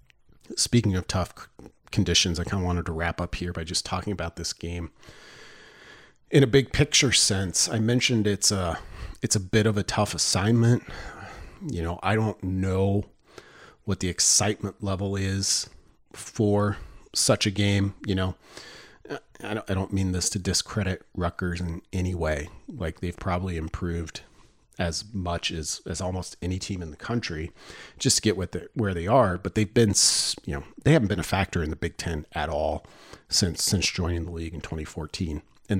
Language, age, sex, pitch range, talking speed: English, 40-59, male, 85-105 Hz, 180 wpm